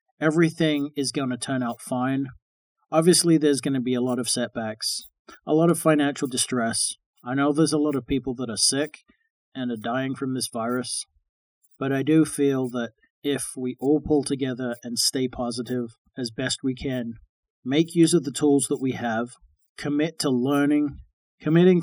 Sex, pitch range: male, 125-145 Hz